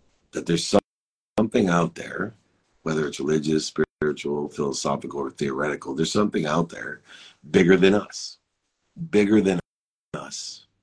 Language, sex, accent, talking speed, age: English, male, American, 120 wpm, 50-69